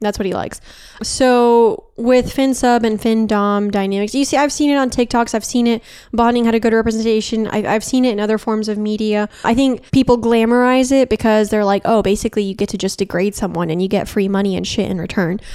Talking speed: 235 wpm